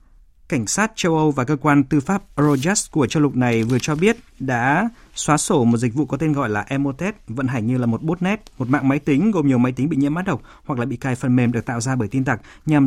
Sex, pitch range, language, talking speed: male, 115-150 Hz, Vietnamese, 275 wpm